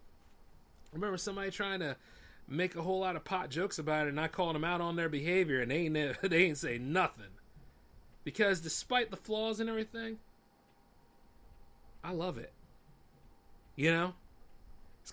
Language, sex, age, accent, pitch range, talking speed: English, male, 30-49, American, 135-190 Hz, 160 wpm